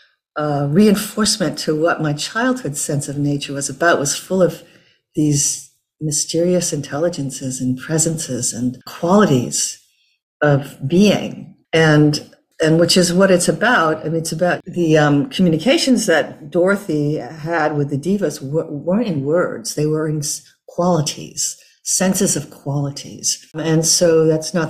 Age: 50-69